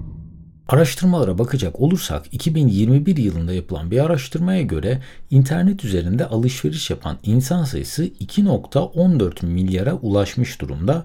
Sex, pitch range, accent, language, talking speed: male, 95-145 Hz, native, Turkish, 105 wpm